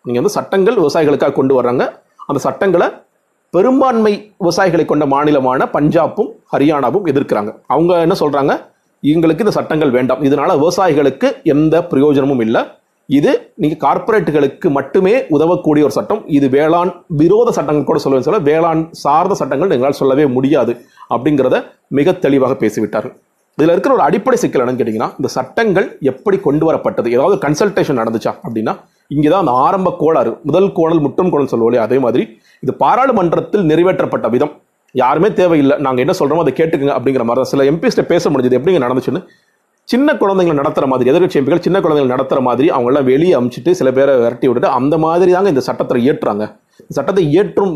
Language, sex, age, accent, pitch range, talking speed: Tamil, male, 30-49, native, 140-180 Hz, 150 wpm